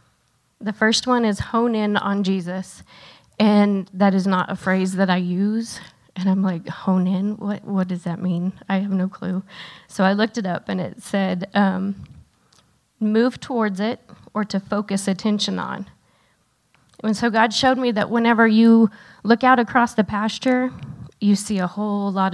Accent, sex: American, female